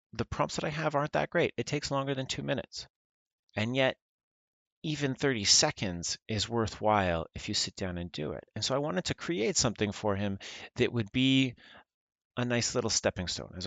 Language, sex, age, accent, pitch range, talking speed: English, male, 30-49, American, 90-120 Hz, 200 wpm